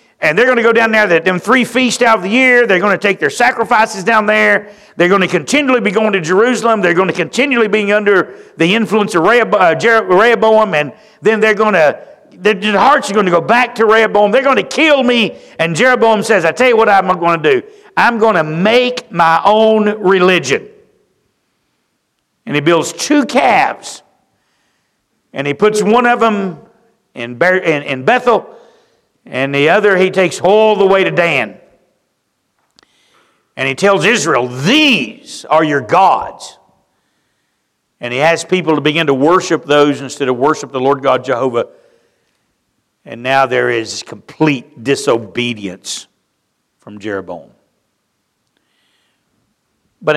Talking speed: 160 wpm